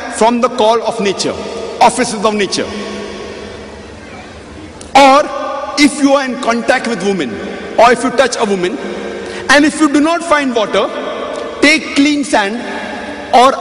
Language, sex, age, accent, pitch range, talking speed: English, male, 60-79, Indian, 195-270 Hz, 145 wpm